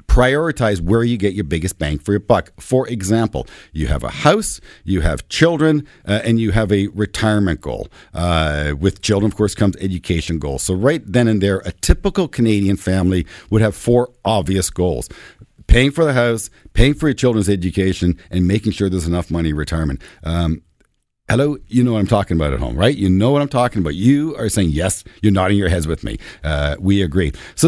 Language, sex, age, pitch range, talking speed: English, male, 50-69, 95-125 Hz, 210 wpm